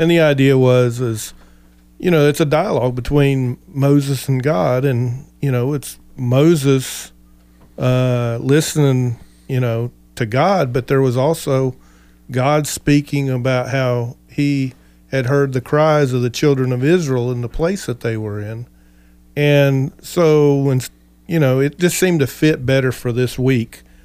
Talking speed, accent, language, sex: 160 wpm, American, English, male